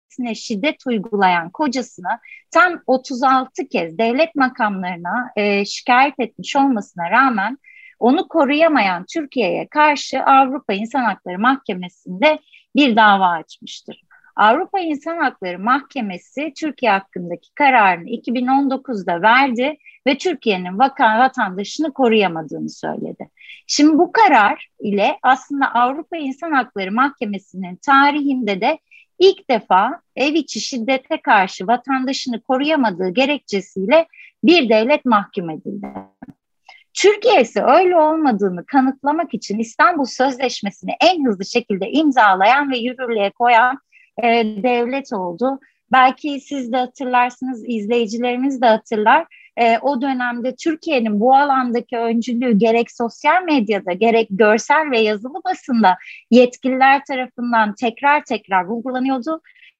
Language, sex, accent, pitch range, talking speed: Turkish, female, native, 215-280 Hz, 105 wpm